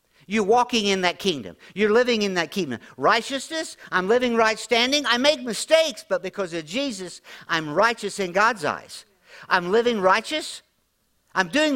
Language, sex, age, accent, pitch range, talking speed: English, male, 50-69, American, 175-245 Hz, 165 wpm